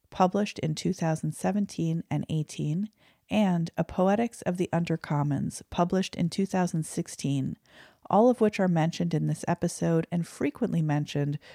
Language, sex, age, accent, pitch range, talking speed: English, female, 40-59, American, 150-185 Hz, 130 wpm